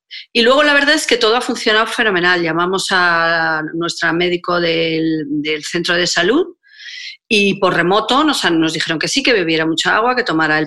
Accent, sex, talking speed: Spanish, female, 195 wpm